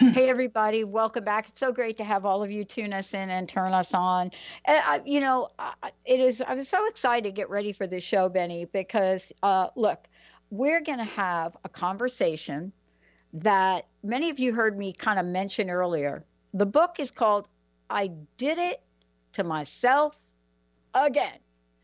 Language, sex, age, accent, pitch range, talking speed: English, female, 60-79, American, 180-245 Hz, 170 wpm